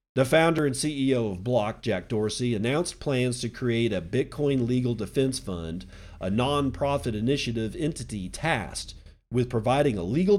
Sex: male